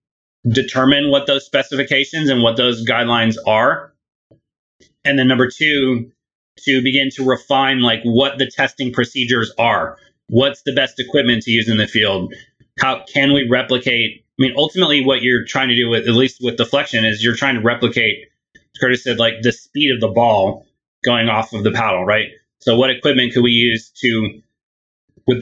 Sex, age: male, 30-49